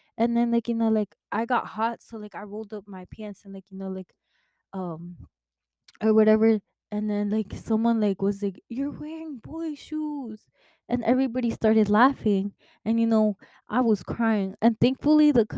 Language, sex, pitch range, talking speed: English, female, 205-245 Hz, 185 wpm